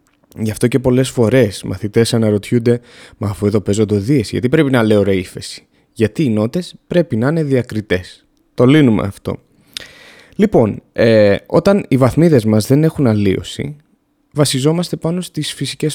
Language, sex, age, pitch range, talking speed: Greek, male, 20-39, 110-175 Hz, 155 wpm